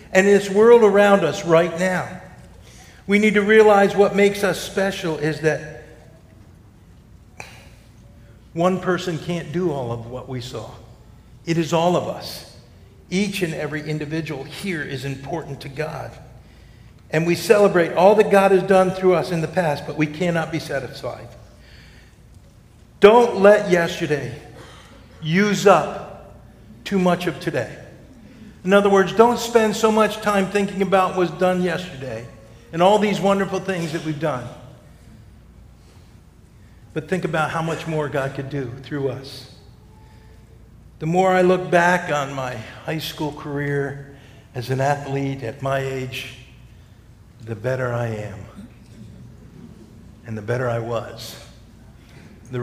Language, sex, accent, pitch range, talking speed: English, male, American, 120-185 Hz, 145 wpm